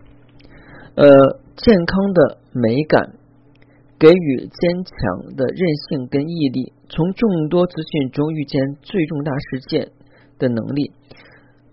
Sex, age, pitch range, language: male, 40-59, 130-165 Hz, Chinese